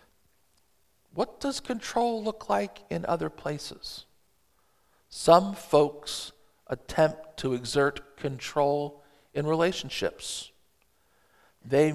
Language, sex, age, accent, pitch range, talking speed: English, male, 50-69, American, 130-155 Hz, 85 wpm